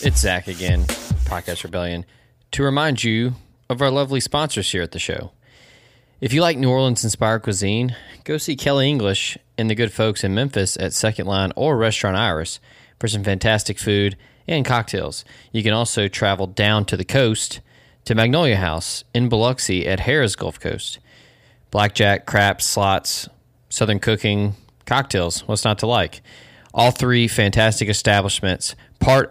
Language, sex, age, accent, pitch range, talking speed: English, male, 20-39, American, 100-125 Hz, 155 wpm